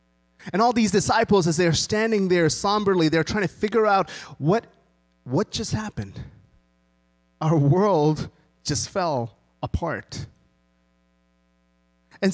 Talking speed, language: 115 wpm, English